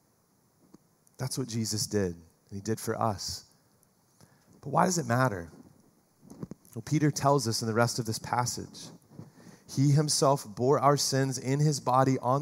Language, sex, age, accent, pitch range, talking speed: English, male, 30-49, American, 115-155 Hz, 160 wpm